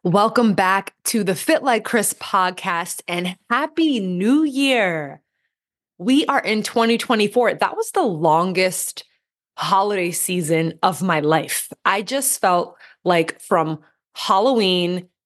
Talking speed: 120 wpm